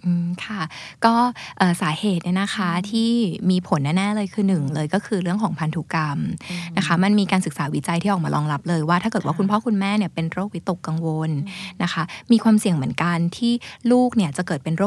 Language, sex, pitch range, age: Thai, female, 160-205 Hz, 20-39